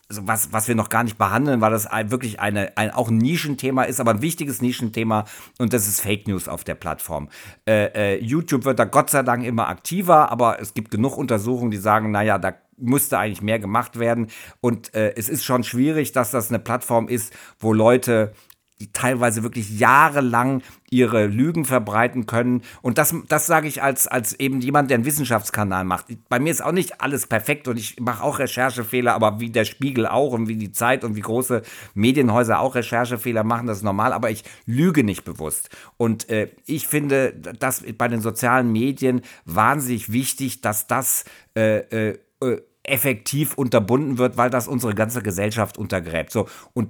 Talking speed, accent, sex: 185 wpm, German, male